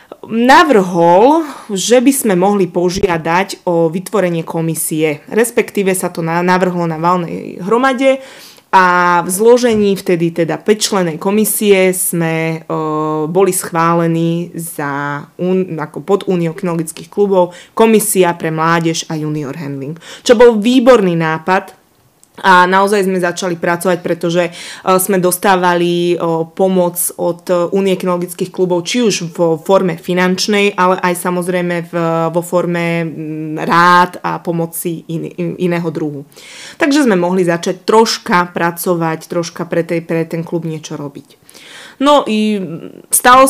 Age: 20-39